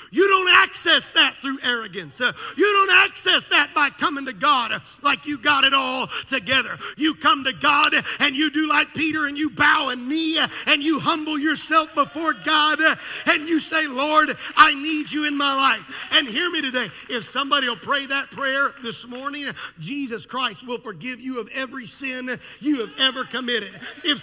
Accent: American